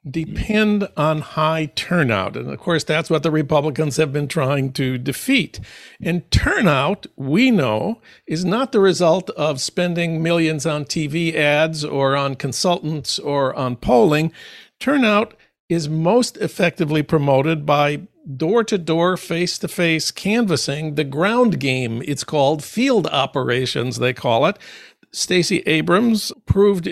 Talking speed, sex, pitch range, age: 130 wpm, male, 145-185 Hz, 50-69